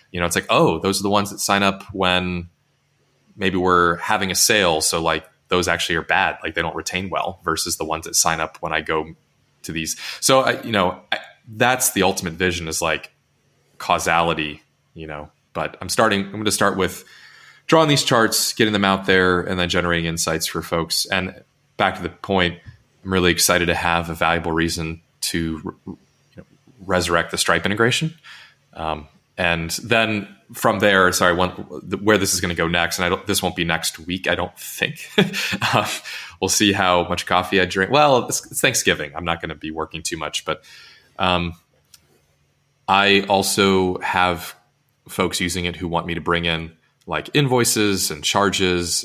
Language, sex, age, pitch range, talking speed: English, male, 20-39, 85-100 Hz, 185 wpm